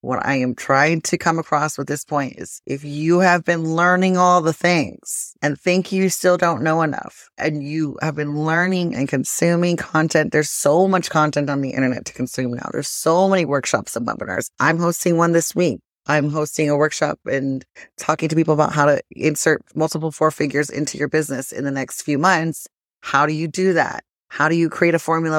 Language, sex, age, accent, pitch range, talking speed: English, female, 30-49, American, 145-175 Hz, 210 wpm